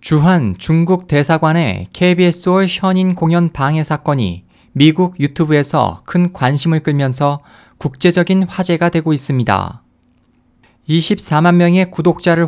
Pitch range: 140-175 Hz